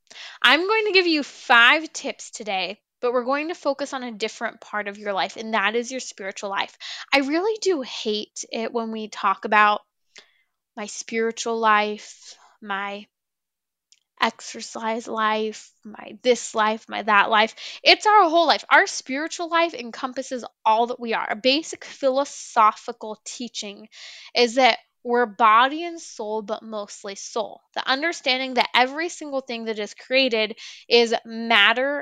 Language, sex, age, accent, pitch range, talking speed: English, female, 10-29, American, 225-280 Hz, 155 wpm